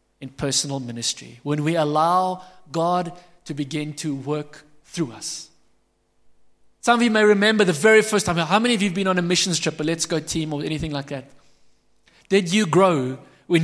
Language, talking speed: English, 195 wpm